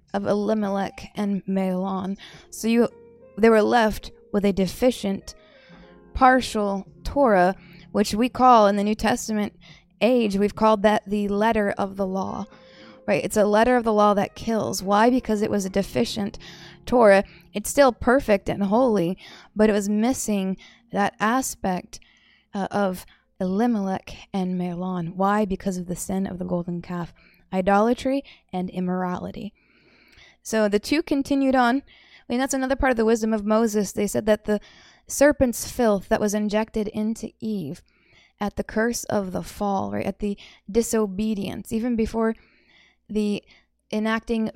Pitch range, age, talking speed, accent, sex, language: 195-225 Hz, 20-39, 155 wpm, American, female, English